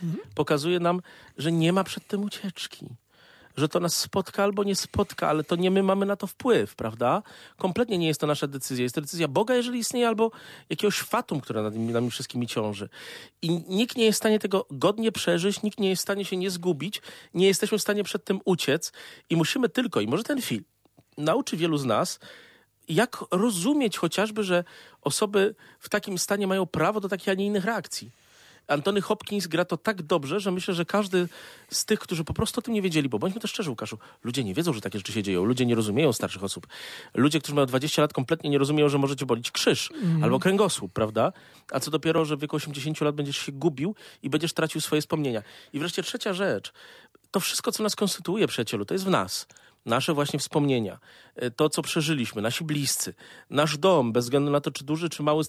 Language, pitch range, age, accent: Polish, 145-200 Hz, 40-59, native